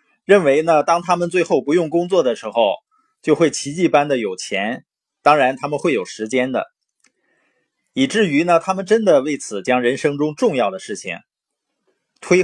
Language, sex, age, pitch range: Chinese, male, 20-39, 140-230 Hz